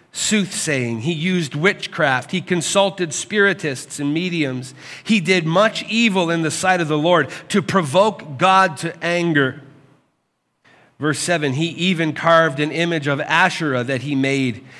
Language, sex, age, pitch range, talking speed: English, male, 40-59, 135-170 Hz, 145 wpm